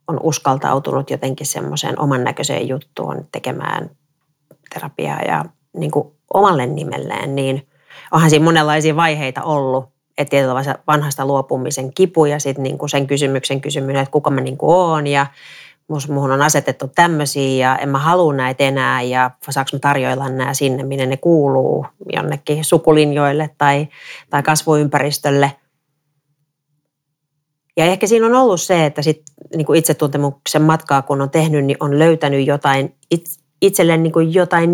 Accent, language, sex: native, Finnish, female